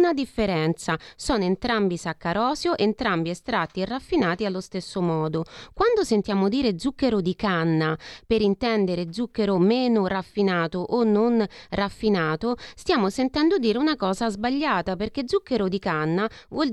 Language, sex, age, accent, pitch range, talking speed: Italian, female, 30-49, native, 185-250 Hz, 135 wpm